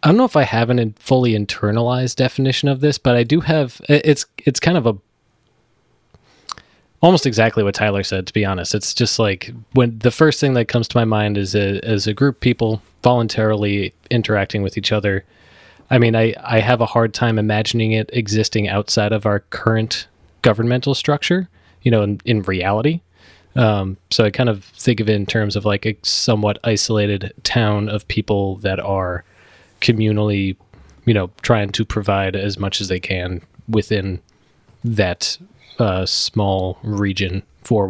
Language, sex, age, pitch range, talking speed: English, male, 20-39, 100-120 Hz, 175 wpm